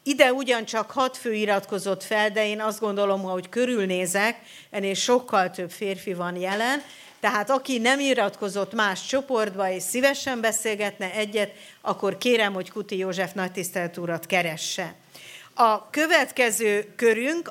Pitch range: 195-245 Hz